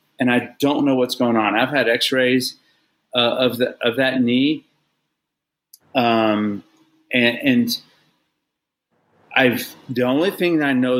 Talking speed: 140 wpm